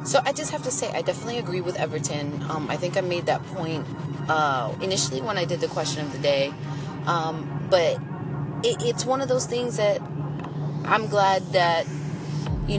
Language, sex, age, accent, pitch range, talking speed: English, female, 30-49, American, 155-180 Hz, 190 wpm